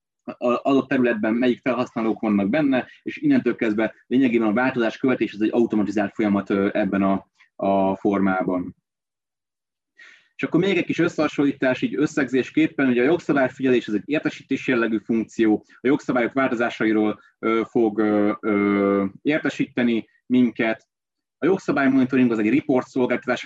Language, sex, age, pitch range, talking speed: Hungarian, male, 30-49, 110-135 Hz, 130 wpm